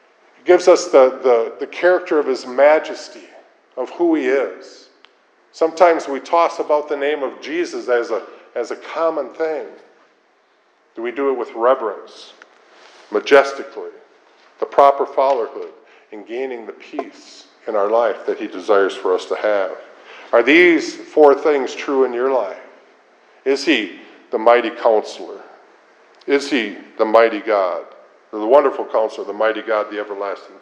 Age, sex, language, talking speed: 50-69, male, English, 145 wpm